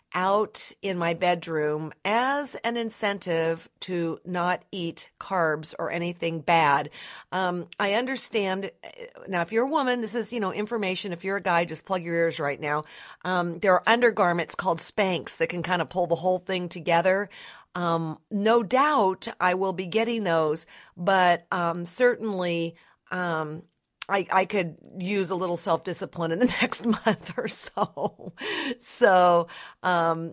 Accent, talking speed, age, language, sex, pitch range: American, 155 wpm, 50-69, English, female, 165-210 Hz